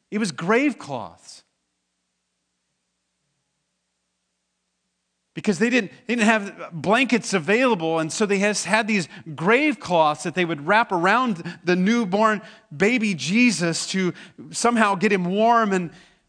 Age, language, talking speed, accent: 40-59, English, 120 wpm, American